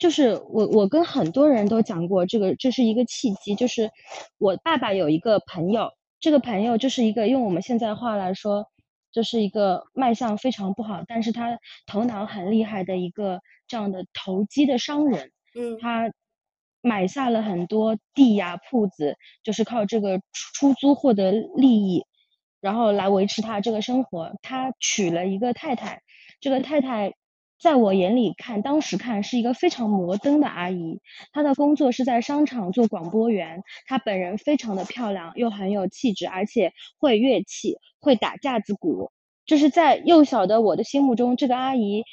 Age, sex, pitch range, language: 20-39, female, 205-260 Hz, Chinese